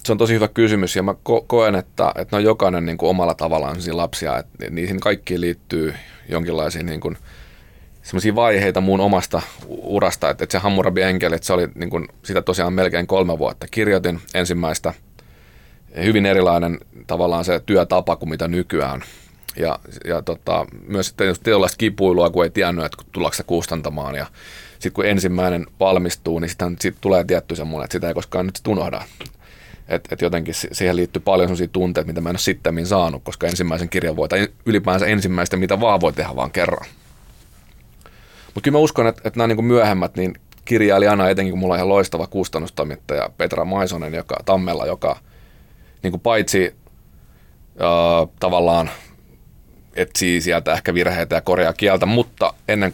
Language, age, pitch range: Finnish, 30-49, 85-95 Hz